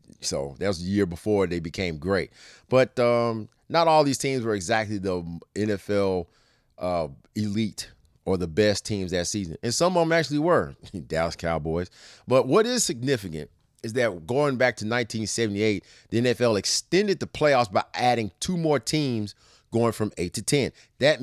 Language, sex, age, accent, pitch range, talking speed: English, male, 30-49, American, 95-125 Hz, 170 wpm